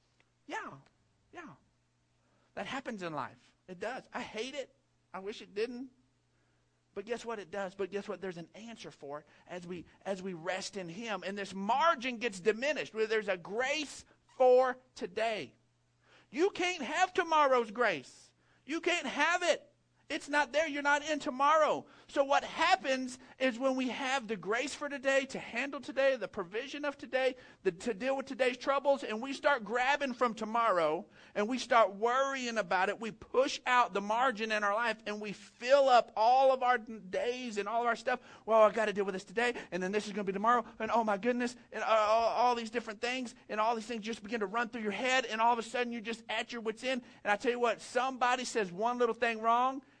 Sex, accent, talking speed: male, American, 210 wpm